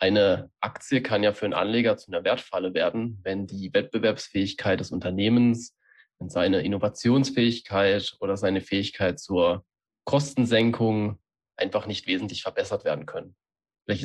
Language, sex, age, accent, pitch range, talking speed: German, male, 20-39, German, 100-120 Hz, 130 wpm